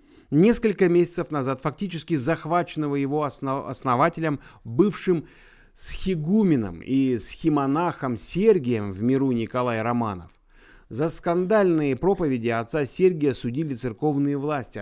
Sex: male